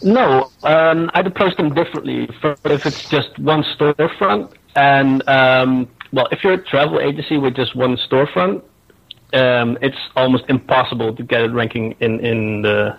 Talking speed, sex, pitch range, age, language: 160 wpm, male, 125-150 Hz, 30-49, English